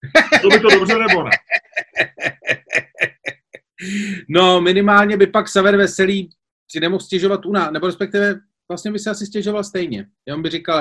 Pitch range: 160-205 Hz